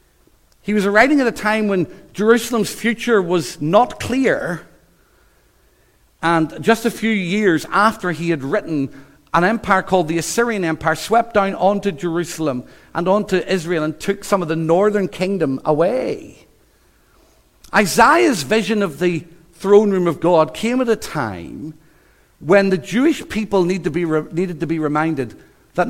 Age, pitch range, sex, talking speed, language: 50-69, 155-210 Hz, male, 155 wpm, English